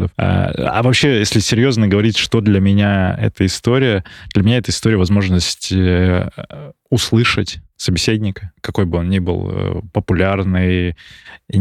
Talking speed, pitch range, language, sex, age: 120 wpm, 90-105 Hz, Russian, male, 20-39